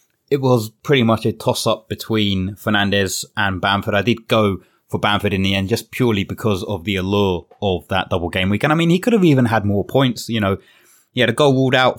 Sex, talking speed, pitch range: male, 240 wpm, 100-120 Hz